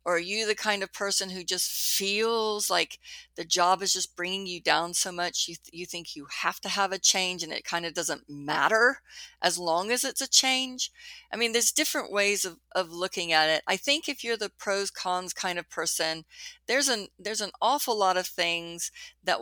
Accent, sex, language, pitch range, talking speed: American, female, English, 165-220 Hz, 220 wpm